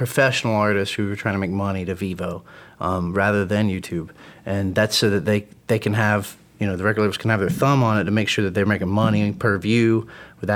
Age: 30-49